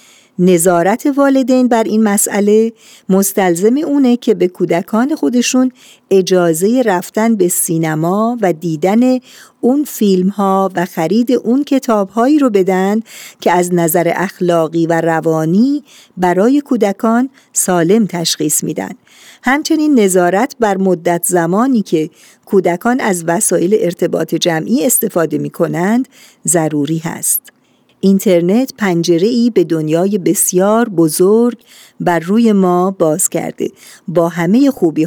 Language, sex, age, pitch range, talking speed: Persian, female, 50-69, 170-230 Hz, 115 wpm